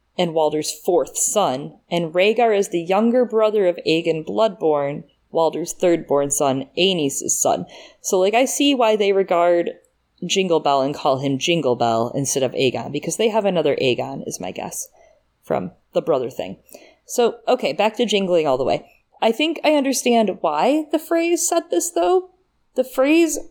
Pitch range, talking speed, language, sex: 165-245 Hz, 170 wpm, English, female